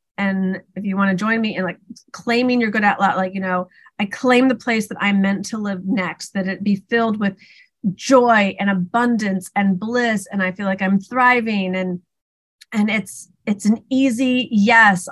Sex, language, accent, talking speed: female, English, American, 200 wpm